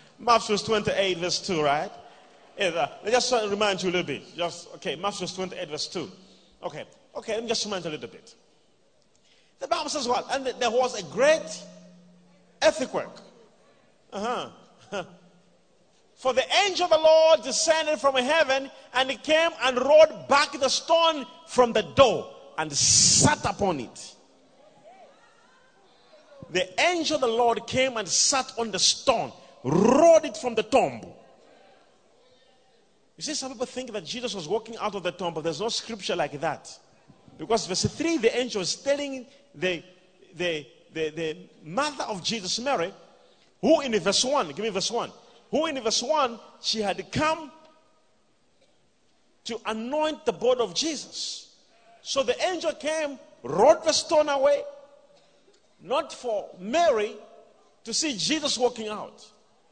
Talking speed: 155 wpm